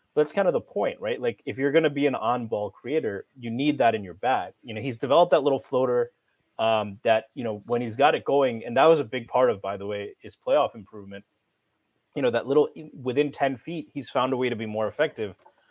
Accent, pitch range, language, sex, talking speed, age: American, 110-140 Hz, English, male, 250 wpm, 30-49